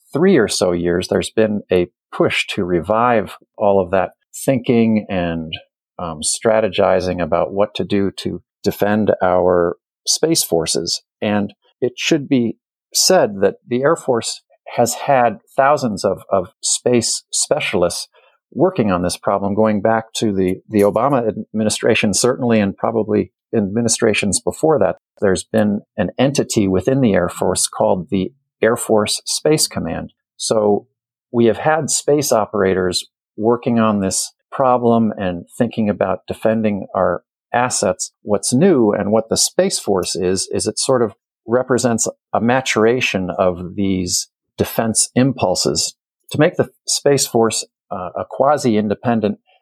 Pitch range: 95-120 Hz